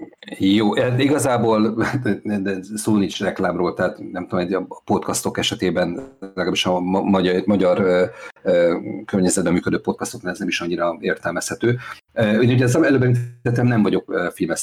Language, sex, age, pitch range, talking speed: Hungarian, male, 50-69, 95-120 Hz, 160 wpm